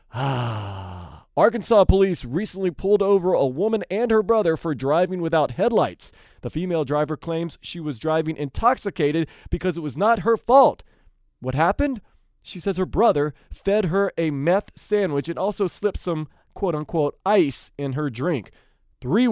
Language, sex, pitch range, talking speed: English, male, 140-205 Hz, 155 wpm